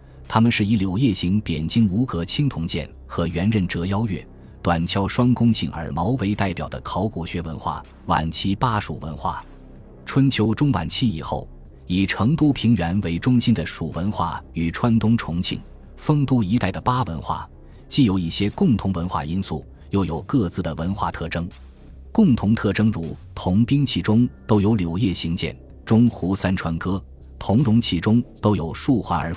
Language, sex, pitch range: Chinese, male, 85-110 Hz